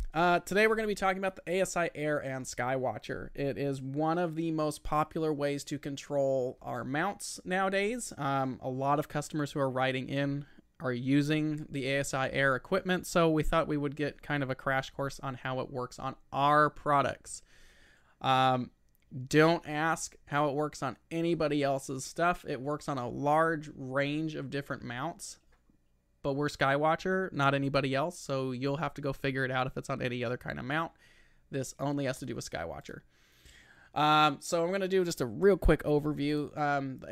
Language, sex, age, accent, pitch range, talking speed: English, male, 20-39, American, 135-155 Hz, 195 wpm